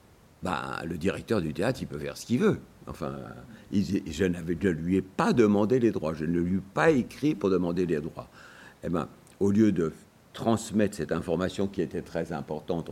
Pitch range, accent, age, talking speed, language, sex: 80-100 Hz, French, 60-79, 205 wpm, French, male